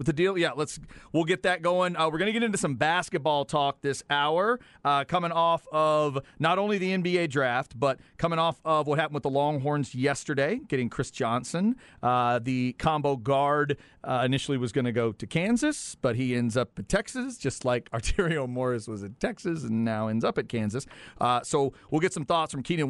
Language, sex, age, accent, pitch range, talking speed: English, male, 40-59, American, 125-165 Hz, 205 wpm